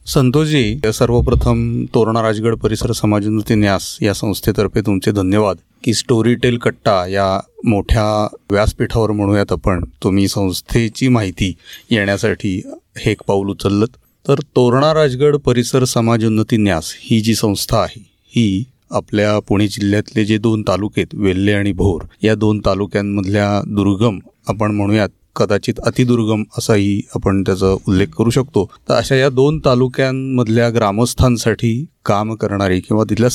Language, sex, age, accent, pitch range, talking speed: Marathi, male, 40-59, native, 100-120 Hz, 125 wpm